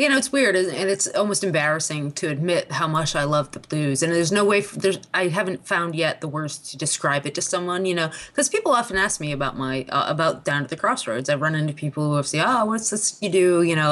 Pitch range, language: 160-225 Hz, English